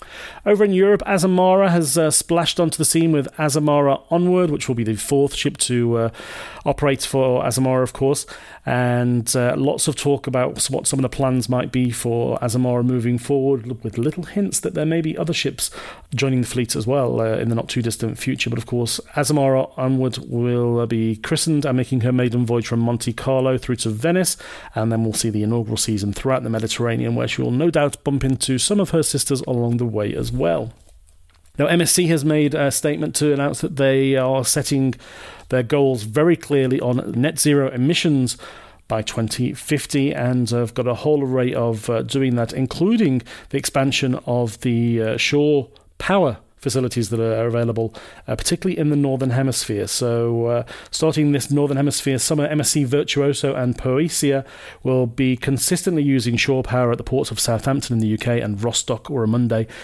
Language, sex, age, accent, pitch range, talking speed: English, male, 40-59, British, 120-145 Hz, 190 wpm